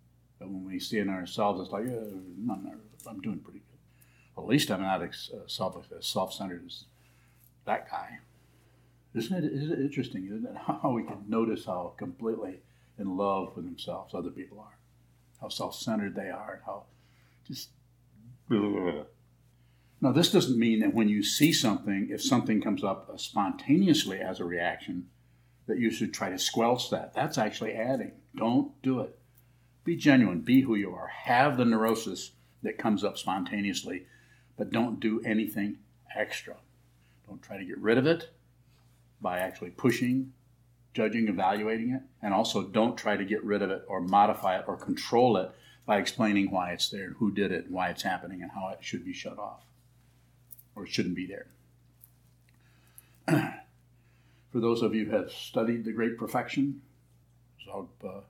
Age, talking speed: 60-79, 170 wpm